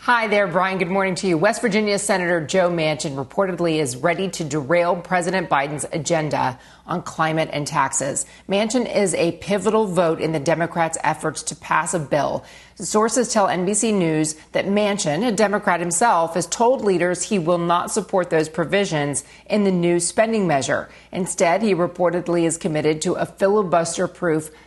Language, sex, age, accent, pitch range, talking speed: English, female, 40-59, American, 160-200 Hz, 165 wpm